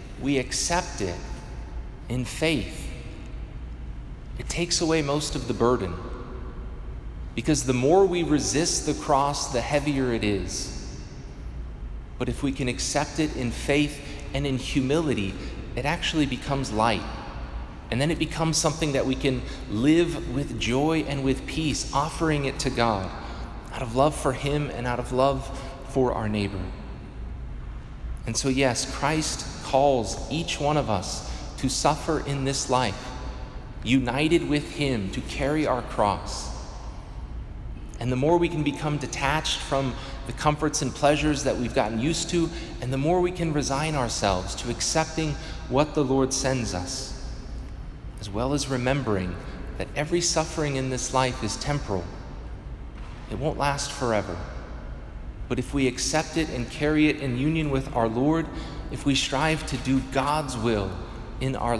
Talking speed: 155 wpm